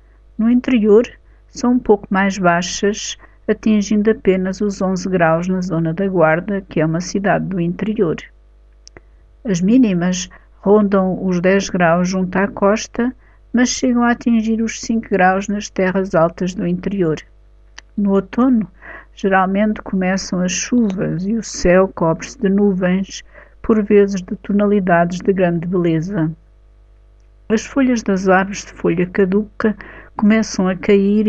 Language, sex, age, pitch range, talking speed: Portuguese, female, 50-69, 180-210 Hz, 140 wpm